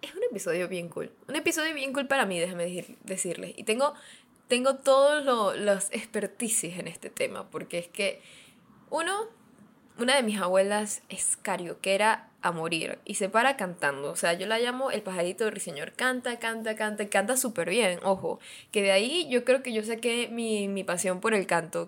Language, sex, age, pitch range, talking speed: Spanish, female, 10-29, 180-250 Hz, 190 wpm